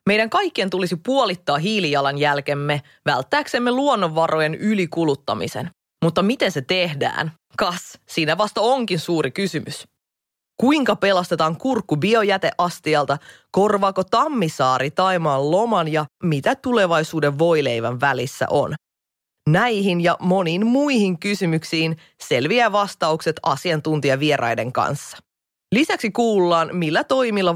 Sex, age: female, 20-39